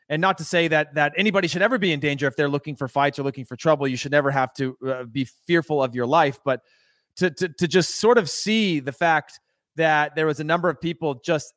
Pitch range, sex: 145-200 Hz, male